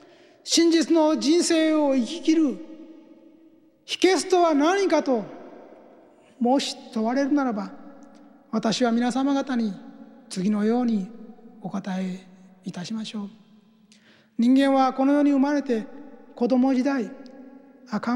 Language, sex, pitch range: Japanese, male, 240-310 Hz